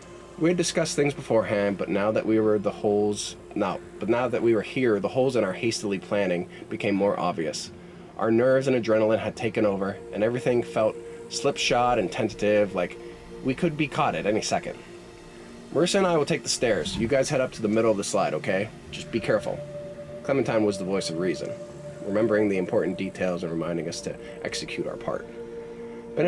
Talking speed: 200 wpm